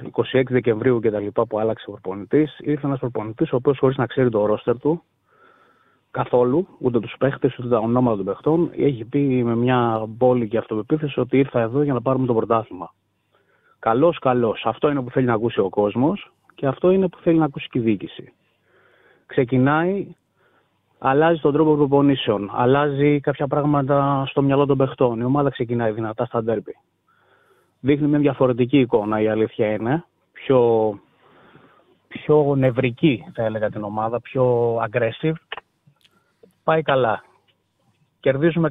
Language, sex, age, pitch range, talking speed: Greek, male, 30-49, 115-150 Hz, 150 wpm